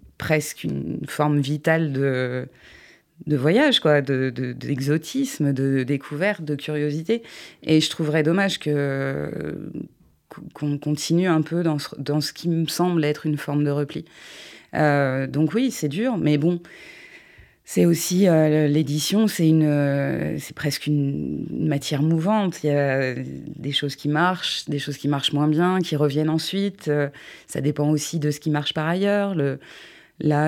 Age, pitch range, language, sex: 20-39, 140-160 Hz, French, female